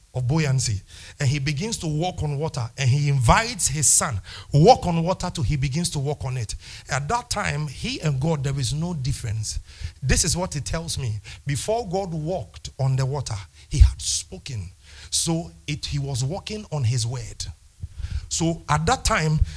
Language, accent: English, Nigerian